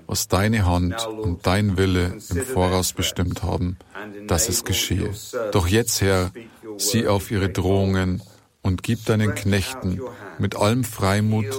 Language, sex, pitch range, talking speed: German, male, 95-110 Hz, 140 wpm